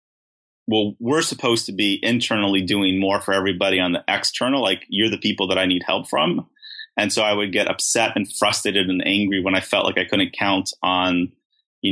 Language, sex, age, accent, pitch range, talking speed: English, male, 30-49, American, 95-115 Hz, 205 wpm